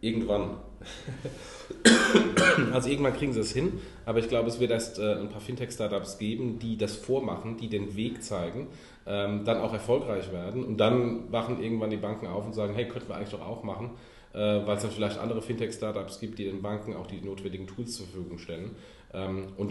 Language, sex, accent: German, male, German